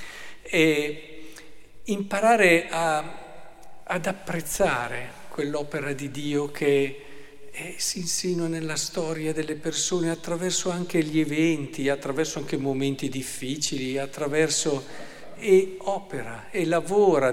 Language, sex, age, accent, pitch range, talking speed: Italian, male, 50-69, native, 140-175 Hz, 95 wpm